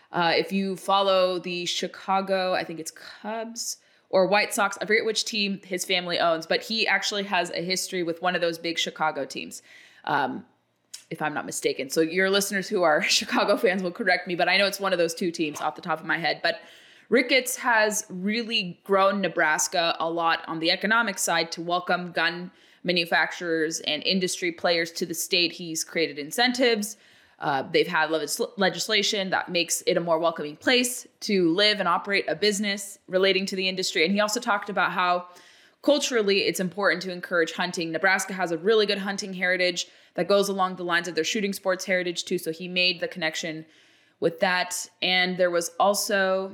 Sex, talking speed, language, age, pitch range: female, 195 wpm, English, 20-39, 175-200 Hz